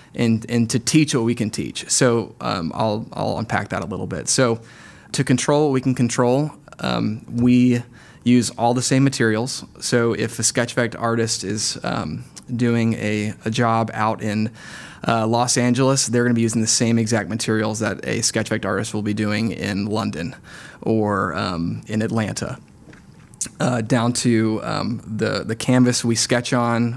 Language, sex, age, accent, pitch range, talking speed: English, male, 20-39, American, 110-125 Hz, 175 wpm